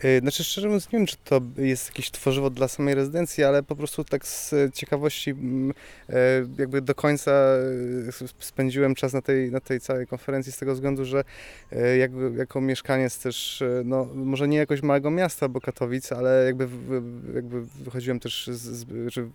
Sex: male